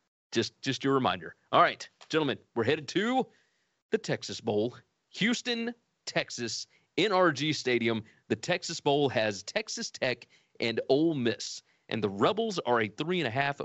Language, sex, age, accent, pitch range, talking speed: English, male, 30-49, American, 115-160 Hz, 155 wpm